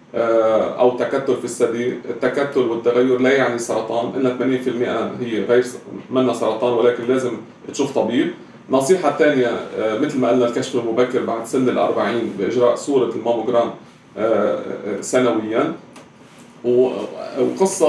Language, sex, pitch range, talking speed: Arabic, male, 120-145 Hz, 115 wpm